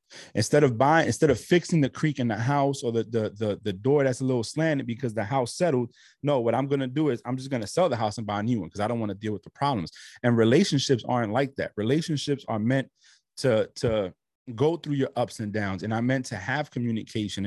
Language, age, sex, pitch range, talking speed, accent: English, 30-49, male, 110-140 Hz, 250 wpm, American